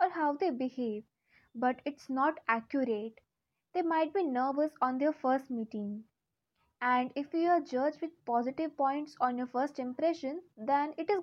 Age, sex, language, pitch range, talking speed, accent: 20-39, female, English, 250-320 Hz, 165 wpm, Indian